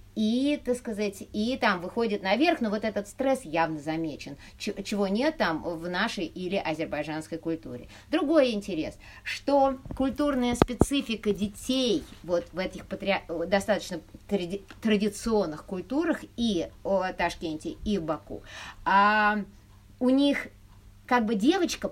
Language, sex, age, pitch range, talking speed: Russian, female, 30-49, 180-255 Hz, 130 wpm